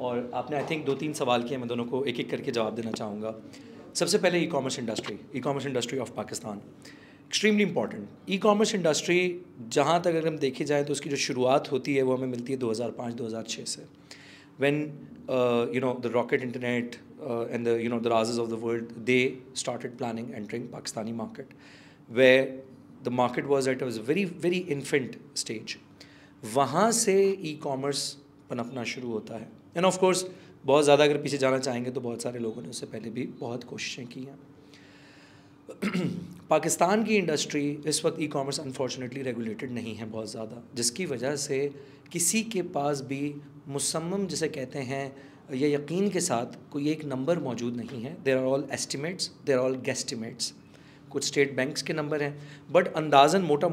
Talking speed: 180 wpm